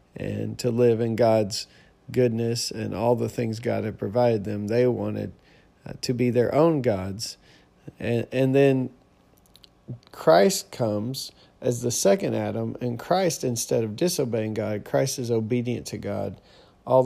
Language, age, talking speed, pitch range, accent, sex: English, 40-59, 150 wpm, 105-130 Hz, American, male